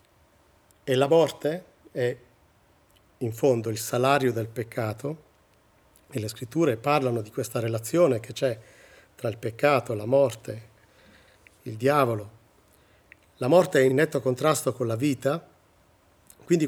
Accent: native